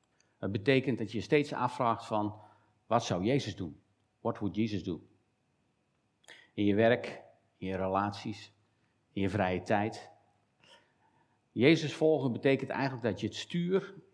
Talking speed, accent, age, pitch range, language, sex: 145 wpm, Dutch, 50-69, 105-130 Hz, Dutch, male